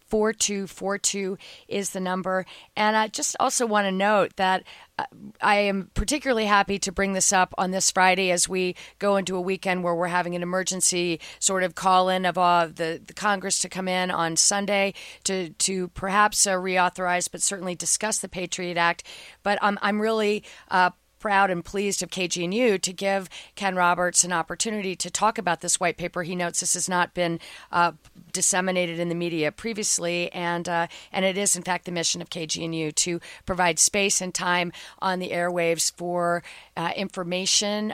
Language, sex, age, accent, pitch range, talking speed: English, female, 40-59, American, 175-195 Hz, 185 wpm